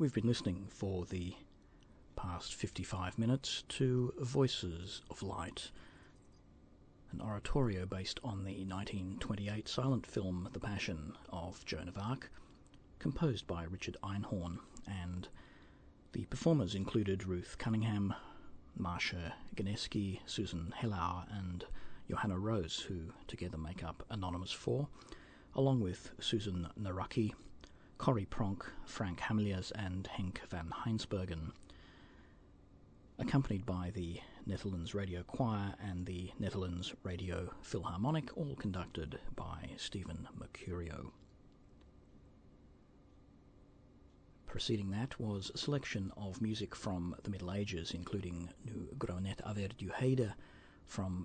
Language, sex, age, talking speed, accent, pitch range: English, male, 40-59, 110 wpm, British, 90-110 Hz